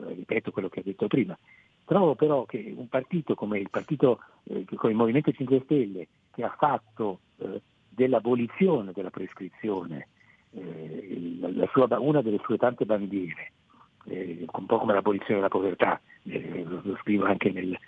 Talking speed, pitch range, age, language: 160 wpm, 100-145 Hz, 50-69, Italian